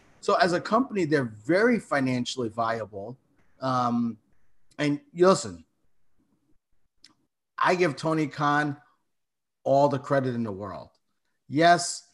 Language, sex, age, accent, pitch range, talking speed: English, male, 30-49, American, 115-145 Hz, 115 wpm